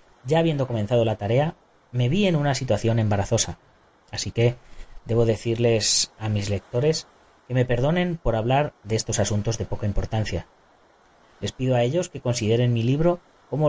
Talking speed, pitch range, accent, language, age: 165 wpm, 100-135 Hz, Spanish, Spanish, 30-49